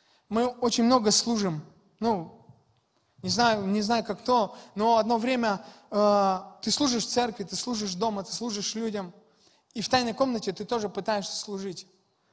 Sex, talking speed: male, 160 wpm